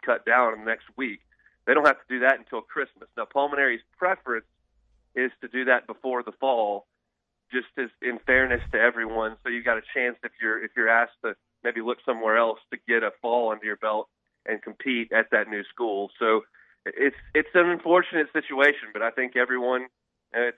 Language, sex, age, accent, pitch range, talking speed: English, male, 30-49, American, 115-130 Hz, 195 wpm